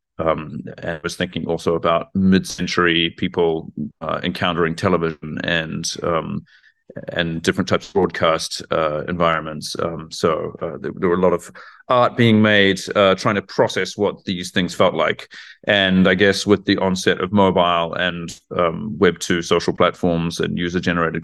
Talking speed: 165 wpm